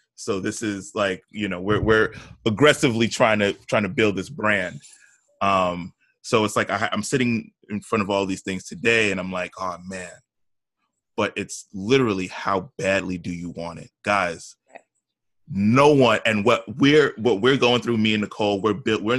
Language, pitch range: English, 95-115 Hz